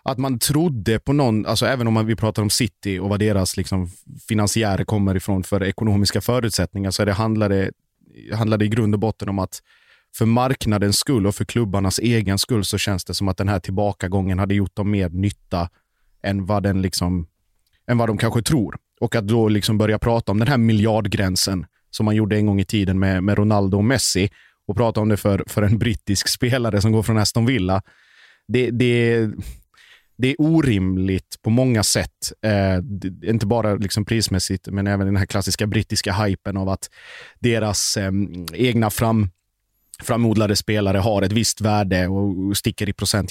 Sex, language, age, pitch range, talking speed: male, Swedish, 30-49, 100-115 Hz, 190 wpm